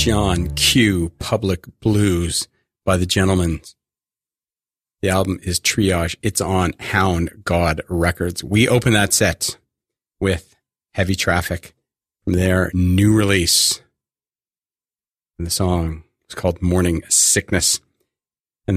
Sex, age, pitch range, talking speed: male, 40-59, 85-105 Hz, 110 wpm